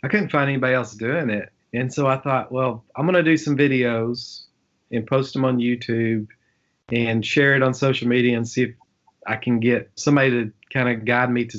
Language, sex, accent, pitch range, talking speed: English, male, American, 115-140 Hz, 210 wpm